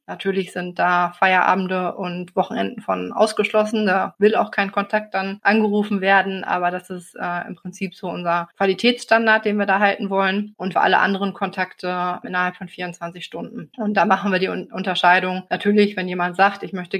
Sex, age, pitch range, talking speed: female, 20-39, 185-210 Hz, 180 wpm